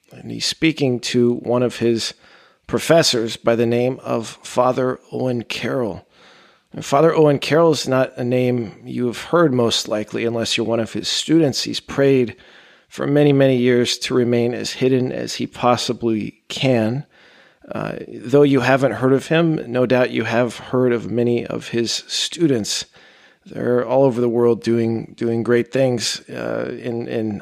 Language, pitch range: English, 120-140 Hz